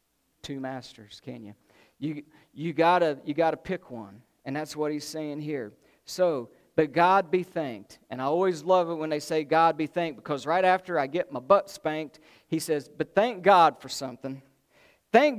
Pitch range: 145-185 Hz